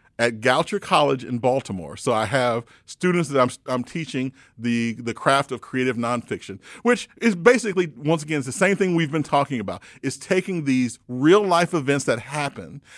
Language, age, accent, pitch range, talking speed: English, 40-59, American, 125-160 Hz, 185 wpm